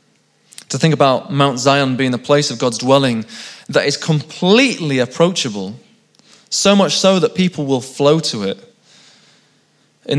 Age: 20-39